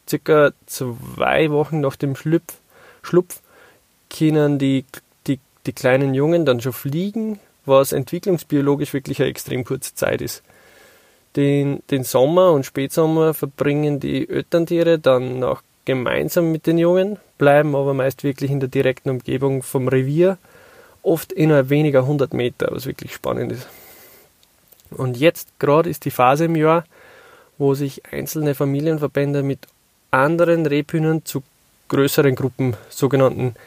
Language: German